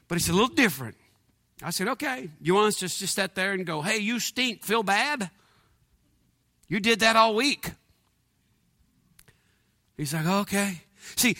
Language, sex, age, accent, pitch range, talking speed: English, male, 50-69, American, 150-185 Hz, 165 wpm